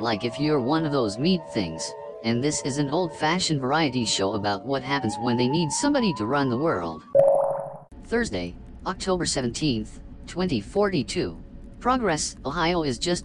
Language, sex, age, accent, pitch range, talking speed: English, female, 50-69, American, 115-170 Hz, 155 wpm